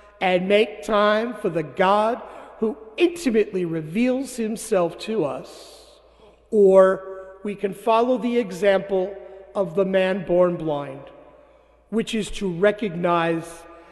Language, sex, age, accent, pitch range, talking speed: English, male, 50-69, American, 165-225 Hz, 115 wpm